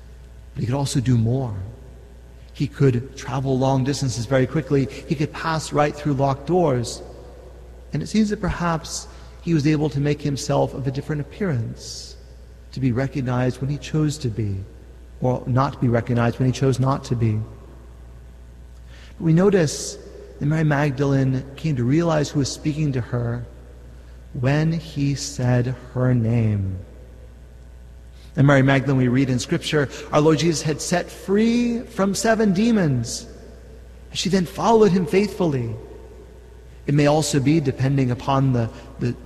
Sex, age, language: male, 40-59, English